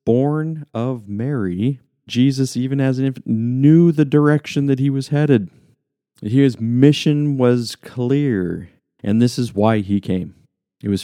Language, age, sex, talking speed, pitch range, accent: English, 40-59, male, 145 wpm, 95-115 Hz, American